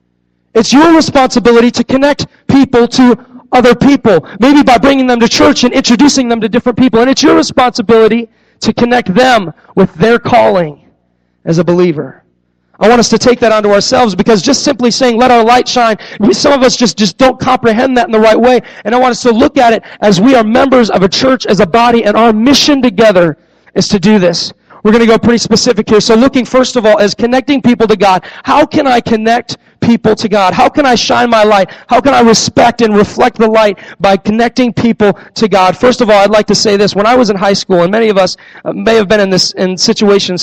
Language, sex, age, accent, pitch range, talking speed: English, male, 30-49, American, 195-245 Hz, 230 wpm